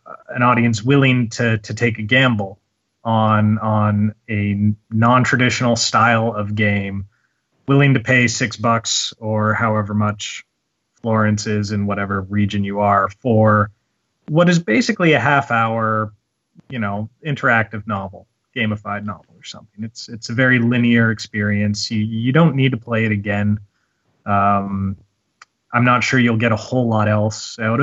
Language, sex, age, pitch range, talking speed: English, male, 30-49, 105-125 Hz, 155 wpm